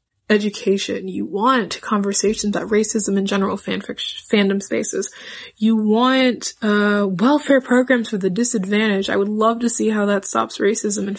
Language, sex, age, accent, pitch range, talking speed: English, female, 20-39, American, 200-225 Hz, 160 wpm